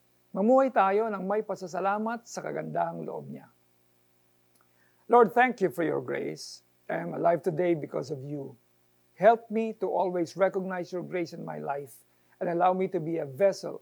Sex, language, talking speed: male, Filipino, 170 wpm